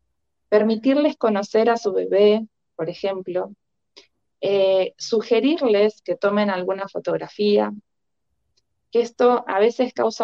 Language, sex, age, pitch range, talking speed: Spanish, female, 20-39, 175-215 Hz, 105 wpm